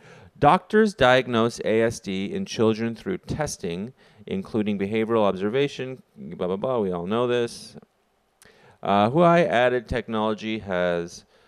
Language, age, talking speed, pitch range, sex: English, 30-49, 120 wpm, 100-130 Hz, male